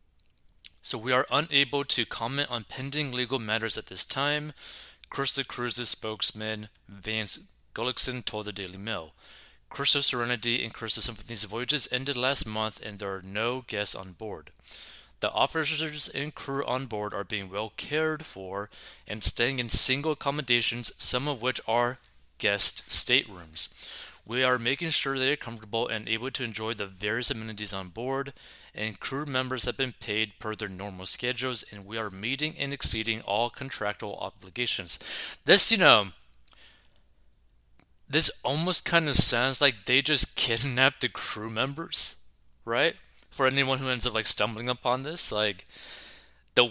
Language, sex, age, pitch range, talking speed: English, male, 30-49, 105-130 Hz, 160 wpm